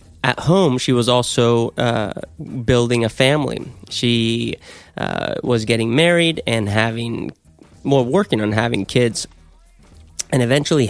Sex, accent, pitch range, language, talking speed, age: male, American, 115-135 Hz, English, 130 wpm, 30-49